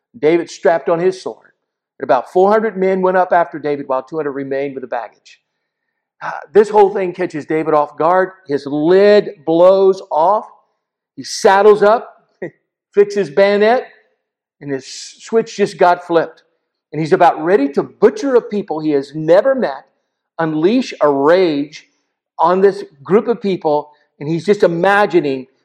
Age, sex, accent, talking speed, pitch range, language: 50-69, male, American, 150 wpm, 155-200 Hz, English